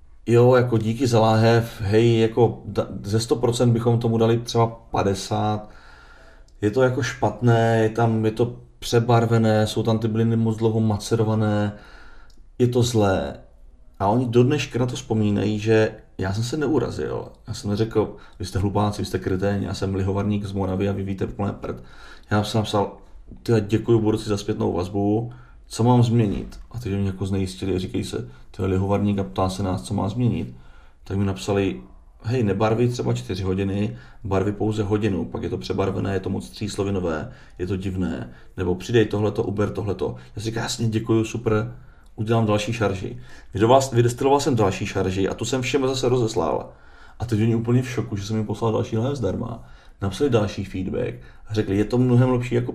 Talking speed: 180 wpm